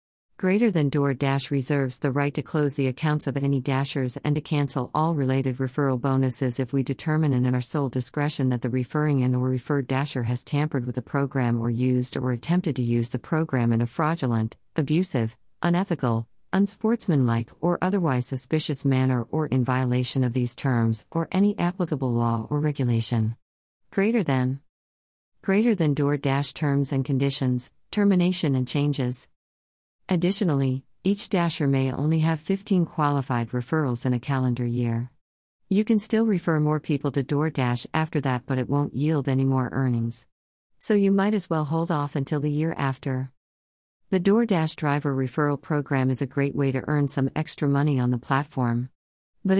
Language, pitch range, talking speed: English, 125-155 Hz, 170 wpm